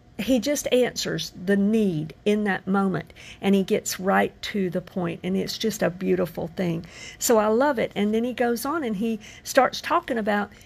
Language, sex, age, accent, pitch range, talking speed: English, female, 50-69, American, 185-235 Hz, 195 wpm